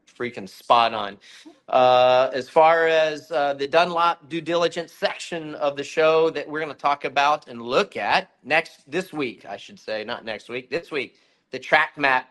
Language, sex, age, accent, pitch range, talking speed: English, male, 40-59, American, 130-155 Hz, 190 wpm